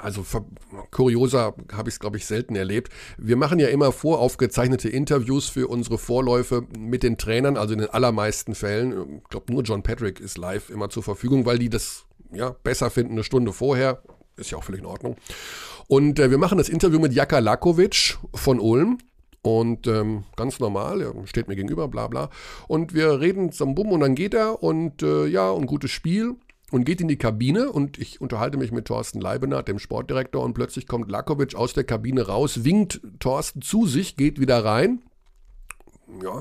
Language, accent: German, German